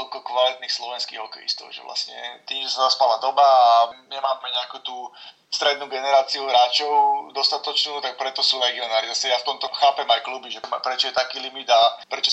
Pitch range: 130-145 Hz